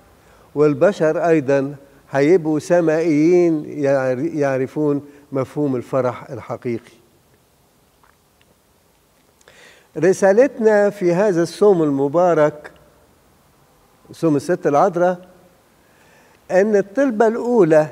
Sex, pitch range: male, 140-170 Hz